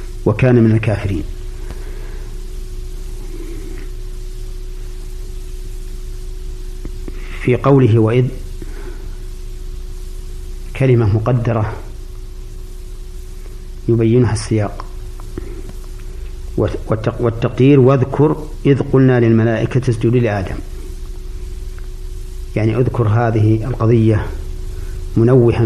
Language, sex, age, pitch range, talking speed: Arabic, male, 50-69, 95-120 Hz, 50 wpm